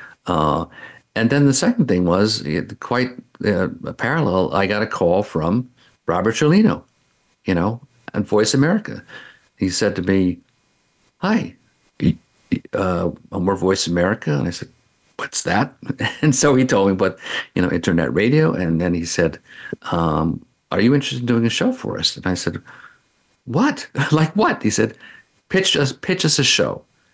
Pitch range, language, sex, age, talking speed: 85-120 Hz, English, male, 50-69, 170 wpm